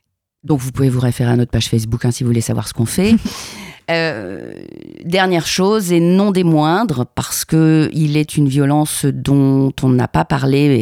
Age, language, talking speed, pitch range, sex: 40-59, French, 195 wpm, 120-150 Hz, female